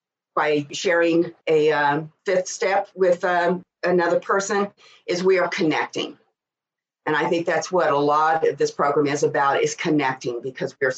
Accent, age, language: American, 50-69, English